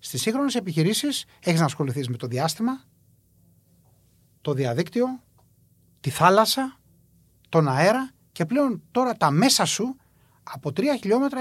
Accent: native